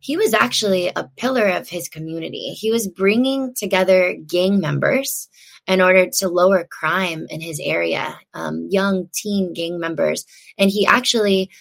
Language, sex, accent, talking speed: English, female, American, 155 wpm